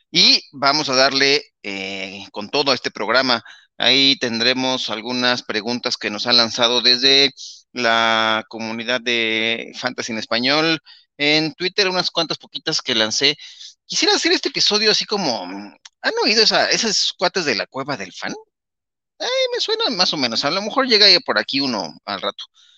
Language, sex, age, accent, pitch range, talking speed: Spanish, male, 30-49, Mexican, 115-160 Hz, 160 wpm